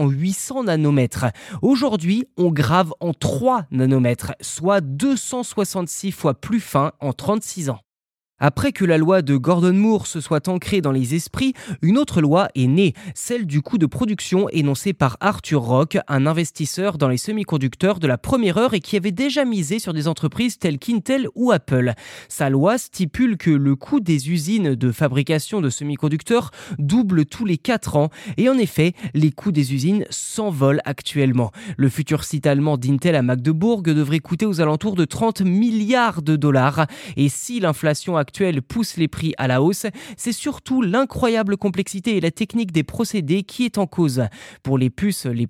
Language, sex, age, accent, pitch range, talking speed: French, male, 20-39, French, 145-210 Hz, 175 wpm